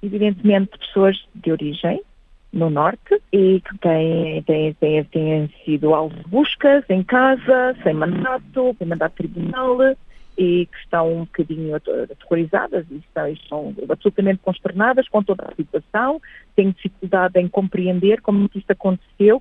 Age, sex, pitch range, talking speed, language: 40-59, female, 165-215 Hz, 140 wpm, Portuguese